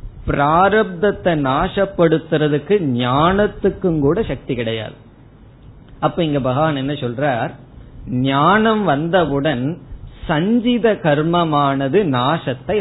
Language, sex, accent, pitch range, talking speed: Tamil, male, native, 135-185 Hz, 75 wpm